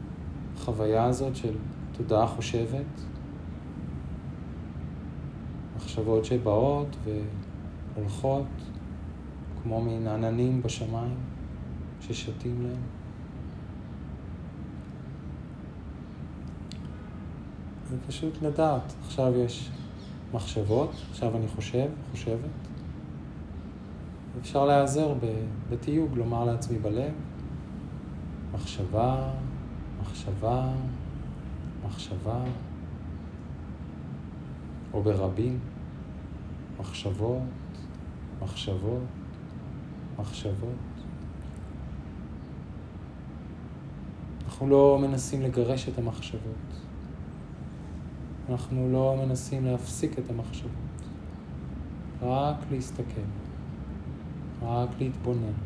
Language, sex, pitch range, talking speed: Hebrew, male, 75-125 Hz, 60 wpm